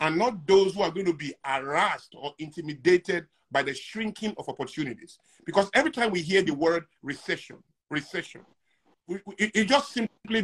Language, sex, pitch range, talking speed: English, male, 160-210 Hz, 160 wpm